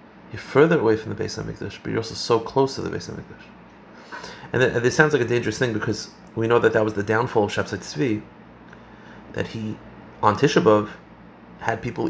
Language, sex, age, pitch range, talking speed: English, male, 30-49, 110-145 Hz, 210 wpm